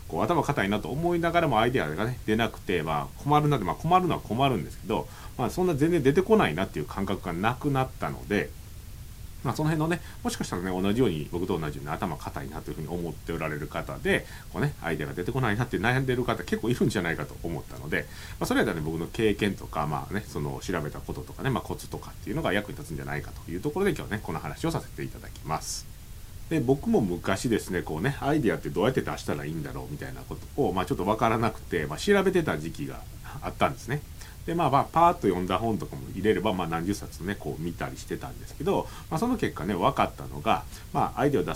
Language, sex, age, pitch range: Japanese, male, 40-59, 90-145 Hz